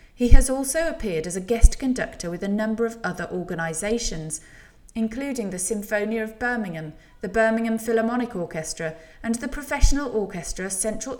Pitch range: 165-230 Hz